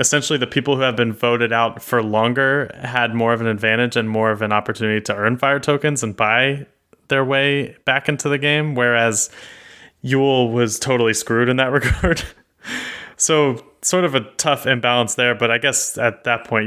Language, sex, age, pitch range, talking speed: English, male, 20-39, 115-145 Hz, 190 wpm